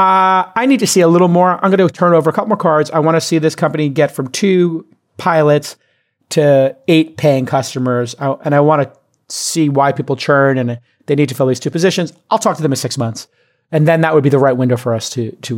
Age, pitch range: 40-59, 125-185 Hz